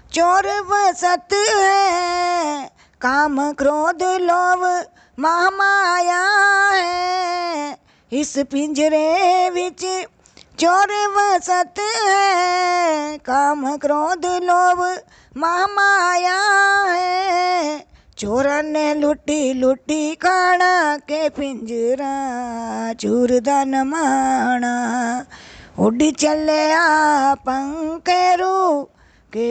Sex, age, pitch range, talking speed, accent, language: female, 20-39, 275-360 Hz, 65 wpm, native, Hindi